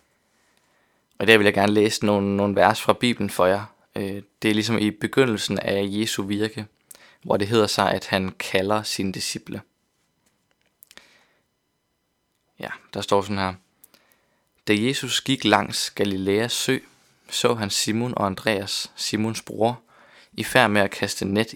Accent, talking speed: native, 150 wpm